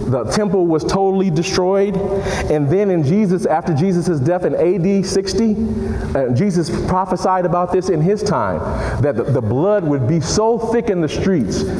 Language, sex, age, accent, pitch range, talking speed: English, male, 40-59, American, 120-185 Hz, 175 wpm